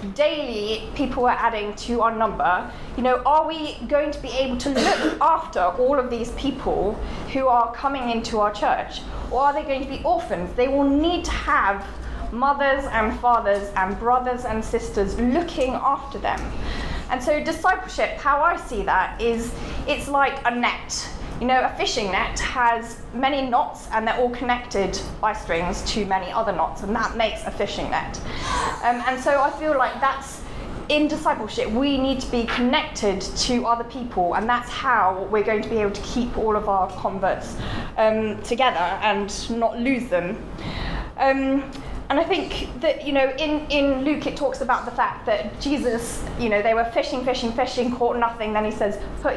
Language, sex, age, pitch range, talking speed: English, female, 20-39, 215-275 Hz, 185 wpm